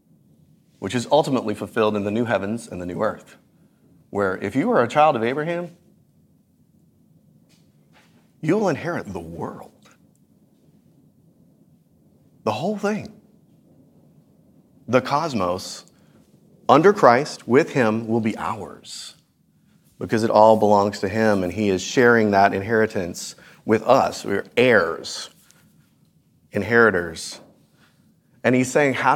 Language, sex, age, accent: English, male, 30-49, American